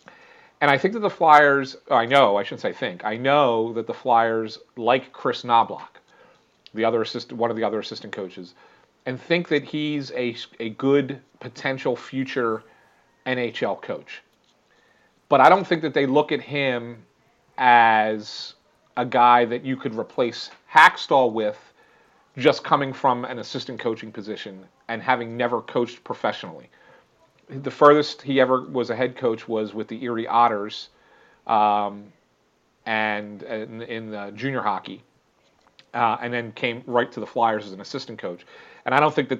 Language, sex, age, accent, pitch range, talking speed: English, male, 40-59, American, 110-135 Hz, 160 wpm